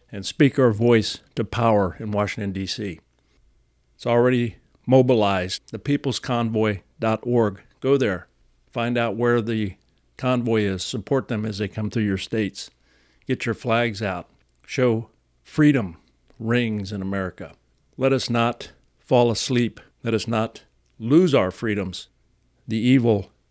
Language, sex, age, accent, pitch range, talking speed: English, male, 50-69, American, 95-120 Hz, 130 wpm